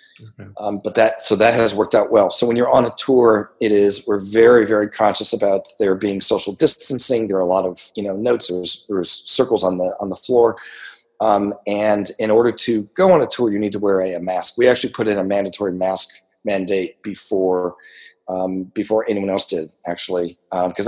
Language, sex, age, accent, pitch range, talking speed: English, male, 40-59, American, 95-110 Hz, 215 wpm